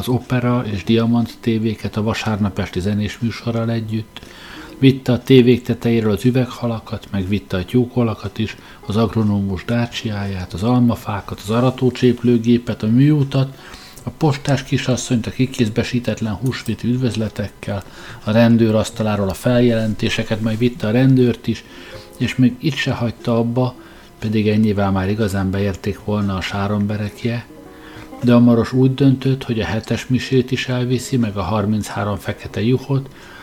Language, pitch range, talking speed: Hungarian, 105-125 Hz, 140 wpm